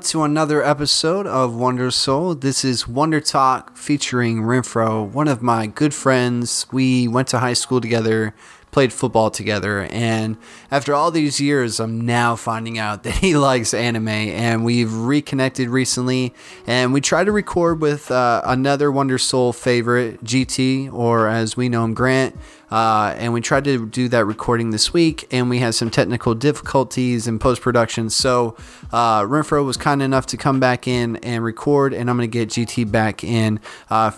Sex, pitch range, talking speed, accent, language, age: male, 115-135 Hz, 175 wpm, American, English, 20-39